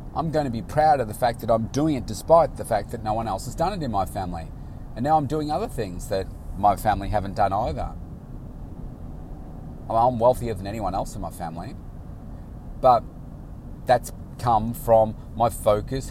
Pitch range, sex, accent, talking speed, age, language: 105-125 Hz, male, Australian, 190 wpm, 30-49, English